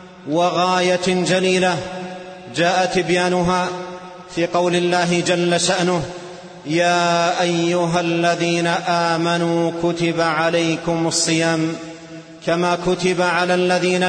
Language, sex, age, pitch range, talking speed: Arabic, male, 40-59, 170-185 Hz, 85 wpm